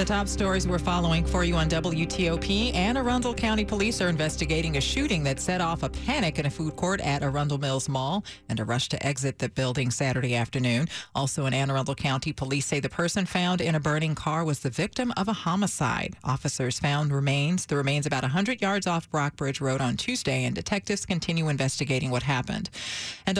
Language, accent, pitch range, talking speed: English, American, 145-195 Hz, 205 wpm